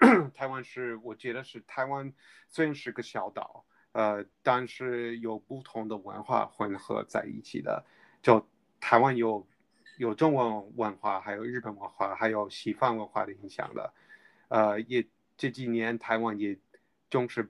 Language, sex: Chinese, male